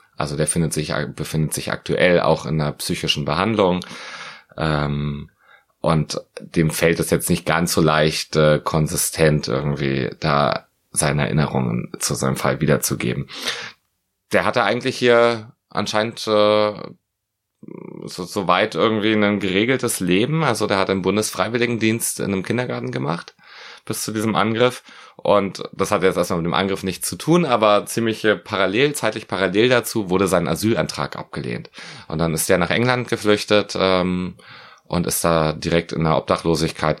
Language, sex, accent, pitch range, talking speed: German, male, German, 75-110 Hz, 150 wpm